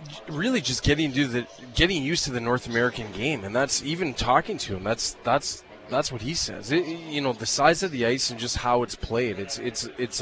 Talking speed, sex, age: 235 wpm, male, 30-49